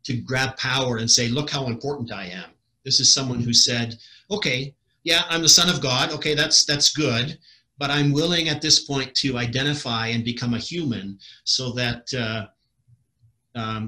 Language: English